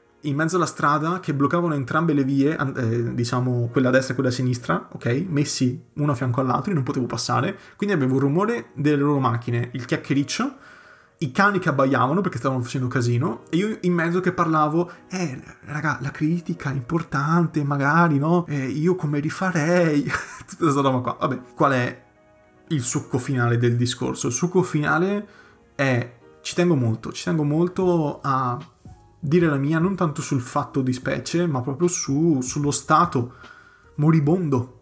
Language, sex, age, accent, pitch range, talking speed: Italian, male, 30-49, native, 125-160 Hz, 175 wpm